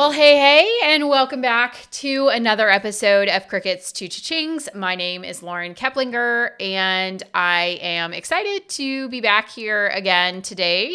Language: English